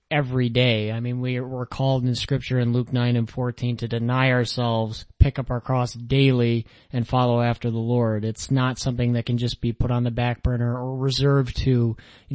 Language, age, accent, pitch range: English, 30-49, American, 115-125 Hz